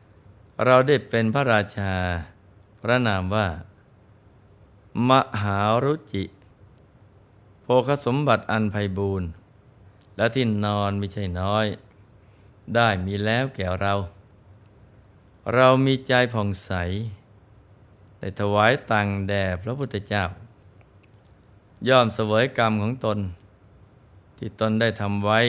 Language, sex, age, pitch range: Thai, male, 20-39, 100-115 Hz